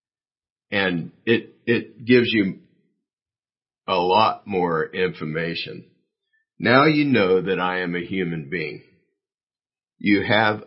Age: 50-69